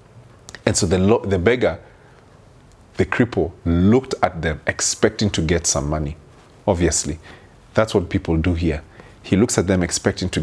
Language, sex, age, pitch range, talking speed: English, male, 40-59, 90-110 Hz, 160 wpm